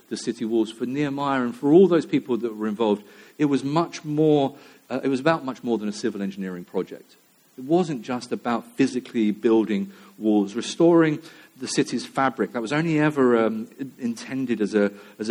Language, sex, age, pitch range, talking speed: English, male, 50-69, 105-135 Hz, 185 wpm